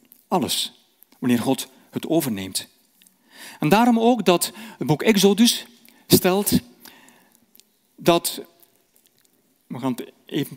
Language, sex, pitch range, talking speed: Dutch, male, 140-230 Hz, 100 wpm